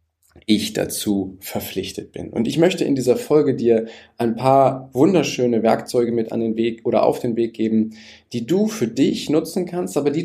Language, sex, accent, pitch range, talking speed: German, male, German, 110-150 Hz, 185 wpm